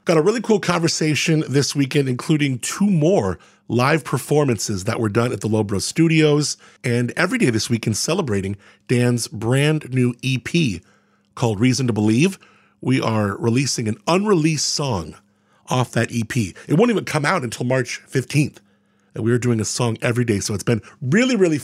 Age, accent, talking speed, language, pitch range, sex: 40-59, American, 175 wpm, English, 110-155 Hz, male